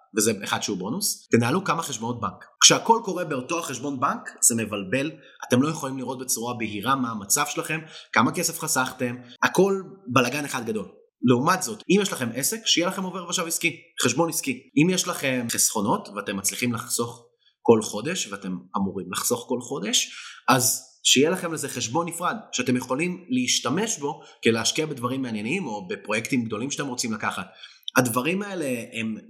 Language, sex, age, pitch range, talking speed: Hebrew, male, 30-49, 120-170 Hz, 145 wpm